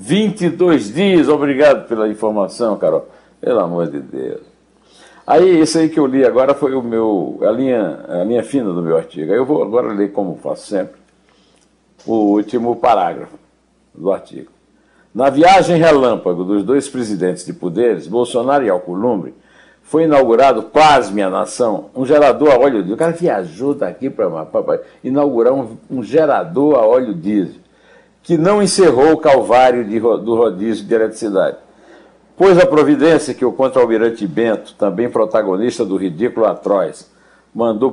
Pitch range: 100-150 Hz